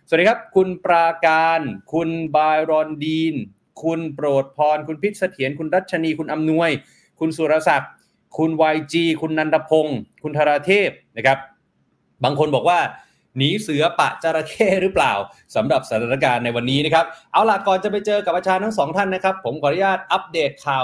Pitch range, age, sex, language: 145-185 Hz, 30-49, male, Thai